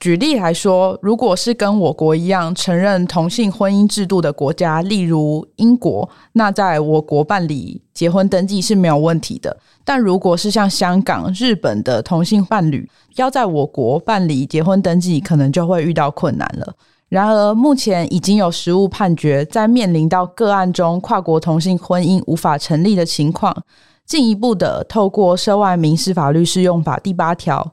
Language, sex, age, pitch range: Chinese, female, 20-39, 160-200 Hz